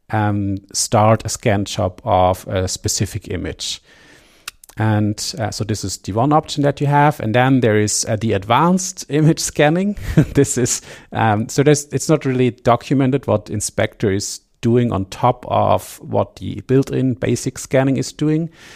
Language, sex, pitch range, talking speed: English, male, 105-130 Hz, 165 wpm